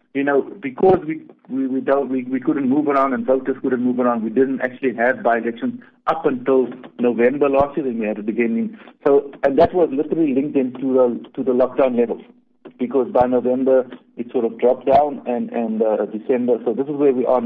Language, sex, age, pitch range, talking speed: English, male, 50-69, 120-155 Hz, 215 wpm